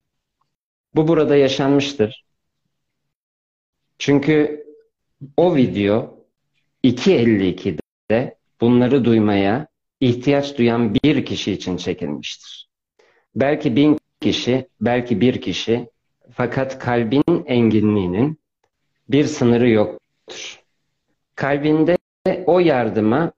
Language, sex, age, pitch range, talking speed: Turkish, male, 50-69, 110-140 Hz, 80 wpm